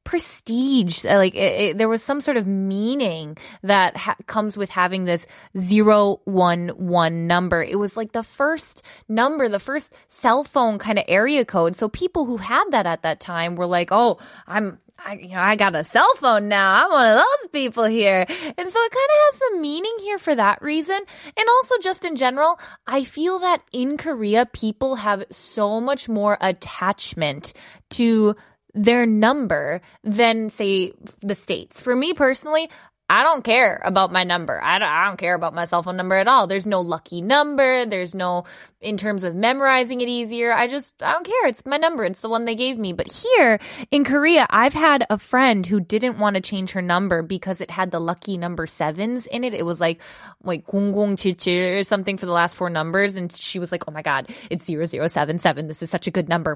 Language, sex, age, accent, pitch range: Korean, female, 20-39, American, 185-285 Hz